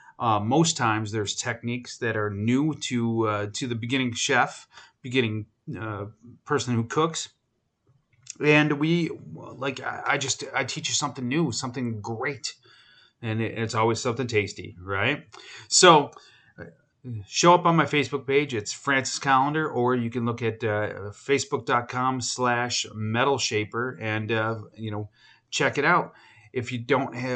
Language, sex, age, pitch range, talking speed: English, male, 30-49, 105-135 Hz, 145 wpm